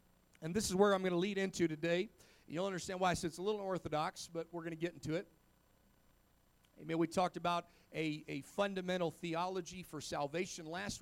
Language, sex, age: English, male, 40-59